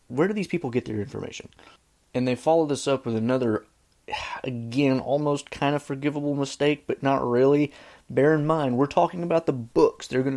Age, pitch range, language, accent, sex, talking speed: 30-49, 115-145 Hz, English, American, male, 190 wpm